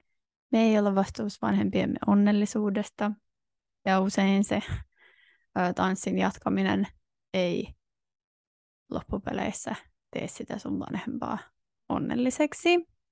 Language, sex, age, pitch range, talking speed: Finnish, female, 20-39, 190-230 Hz, 80 wpm